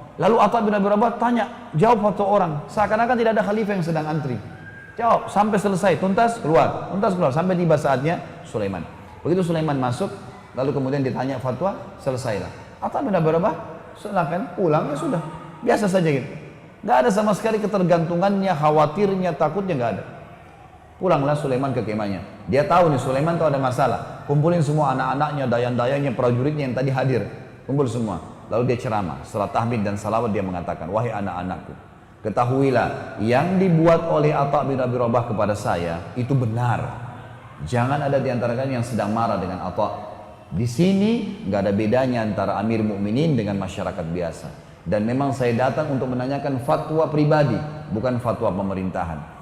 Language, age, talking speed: Indonesian, 30-49, 155 wpm